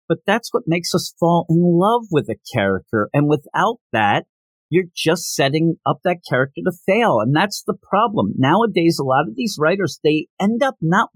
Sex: male